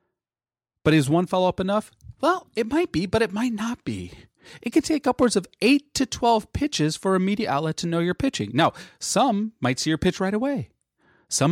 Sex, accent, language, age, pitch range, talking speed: male, American, English, 30-49, 125-210 Hz, 215 wpm